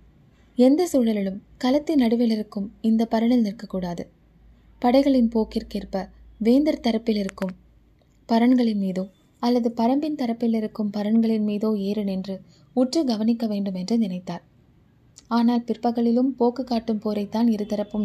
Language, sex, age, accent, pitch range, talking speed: Tamil, female, 20-39, native, 195-235 Hz, 105 wpm